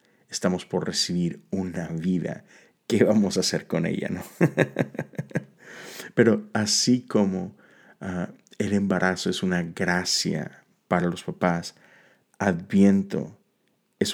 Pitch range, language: 90-105 Hz, Spanish